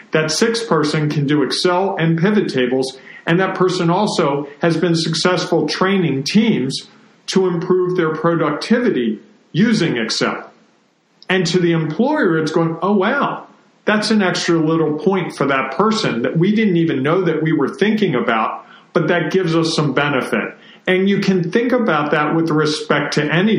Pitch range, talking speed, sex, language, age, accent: 155-185 Hz, 170 wpm, male, English, 40-59, American